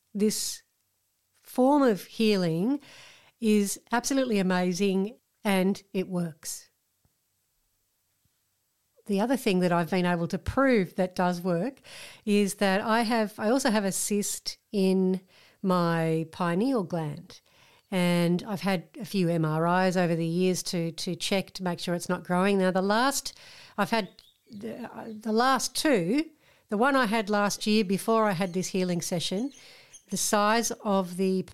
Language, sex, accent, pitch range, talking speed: English, female, Australian, 180-220 Hz, 150 wpm